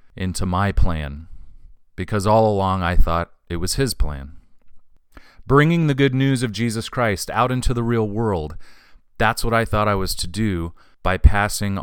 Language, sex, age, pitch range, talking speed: English, male, 40-59, 85-120 Hz, 170 wpm